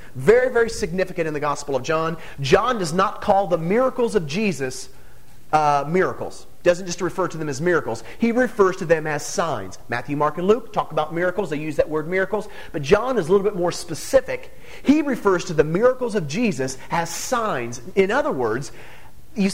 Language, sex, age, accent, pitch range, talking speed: English, male, 40-59, American, 155-215 Hz, 195 wpm